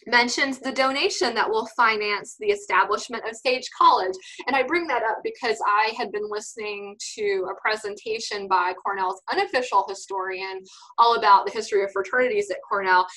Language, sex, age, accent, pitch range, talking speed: English, female, 20-39, American, 195-265 Hz, 165 wpm